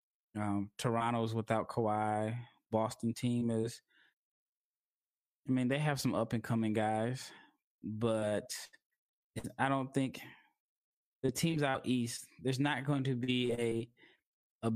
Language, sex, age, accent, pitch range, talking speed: English, male, 20-39, American, 105-130 Hz, 125 wpm